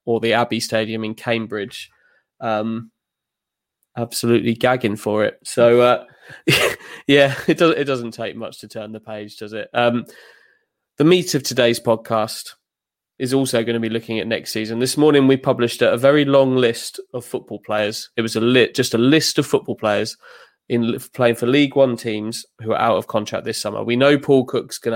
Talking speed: 195 wpm